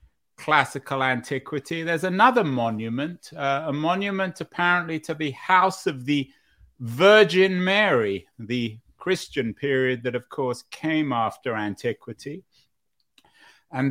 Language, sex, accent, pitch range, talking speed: English, male, British, 125-155 Hz, 110 wpm